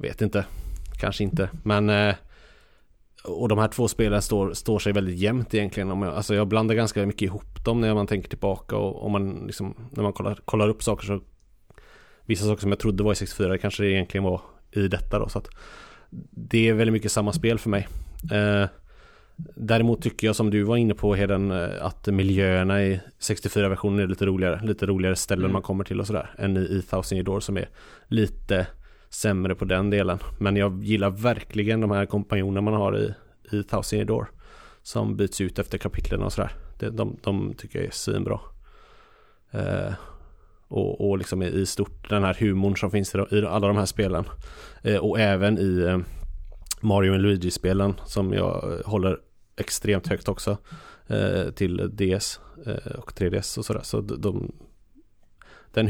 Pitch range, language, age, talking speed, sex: 95-105 Hz, English, 30-49, 180 wpm, male